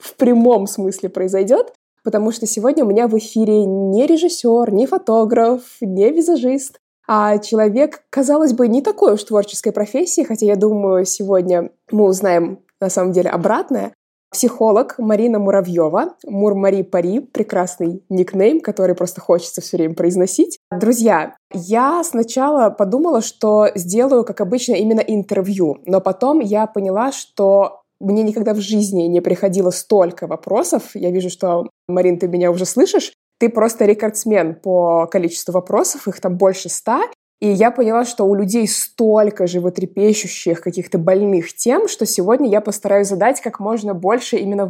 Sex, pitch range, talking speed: female, 190-230 Hz, 145 wpm